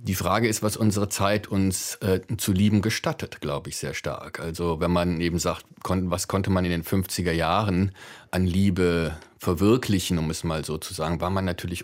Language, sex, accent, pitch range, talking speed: German, male, German, 90-105 Hz, 200 wpm